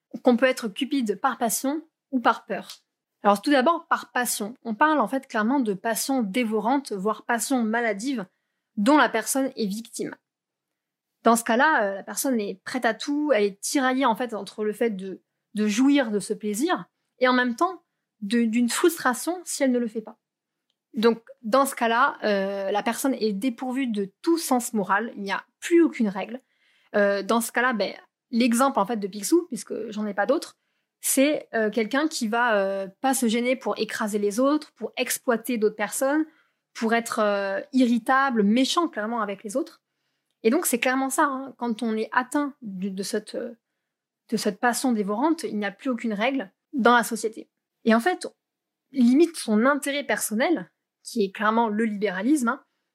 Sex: female